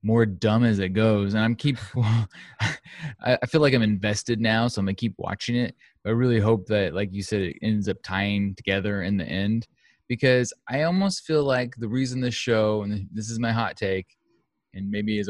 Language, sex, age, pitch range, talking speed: English, male, 20-39, 105-125 Hz, 210 wpm